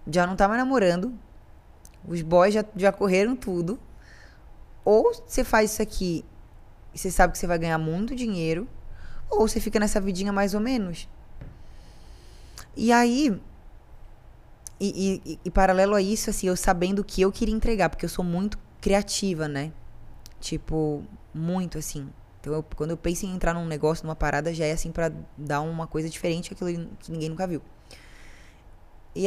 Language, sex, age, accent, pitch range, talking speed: Portuguese, female, 20-39, Brazilian, 150-195 Hz, 170 wpm